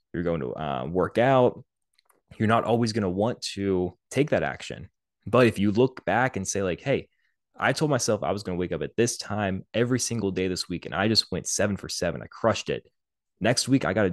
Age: 20-39